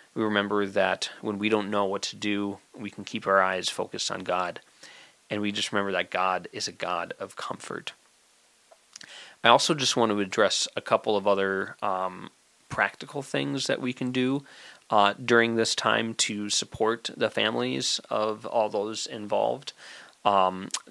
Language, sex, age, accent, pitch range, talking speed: English, male, 20-39, American, 100-110 Hz, 170 wpm